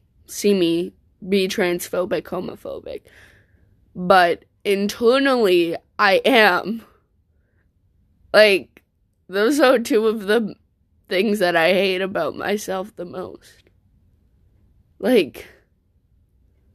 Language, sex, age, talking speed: English, female, 20-39, 85 wpm